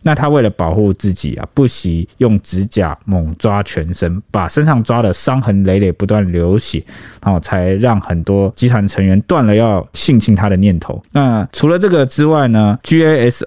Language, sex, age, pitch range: Chinese, male, 20-39, 95-125 Hz